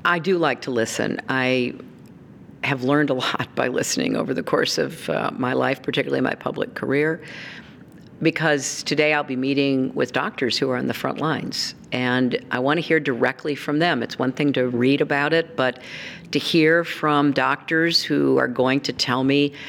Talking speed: 190 wpm